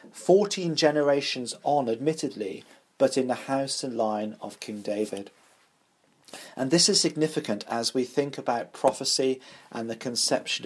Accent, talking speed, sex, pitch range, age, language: British, 140 wpm, male, 115-150 Hz, 40-59, English